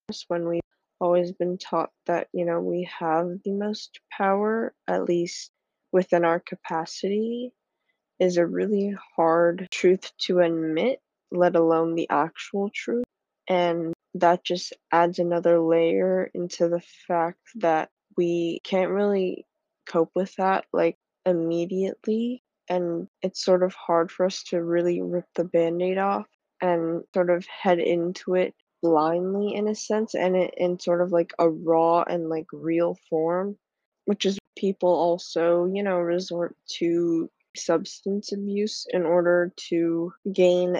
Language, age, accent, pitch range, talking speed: English, 20-39, American, 170-195 Hz, 140 wpm